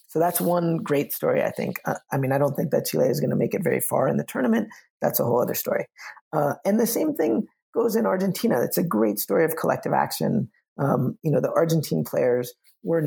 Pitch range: 140-180 Hz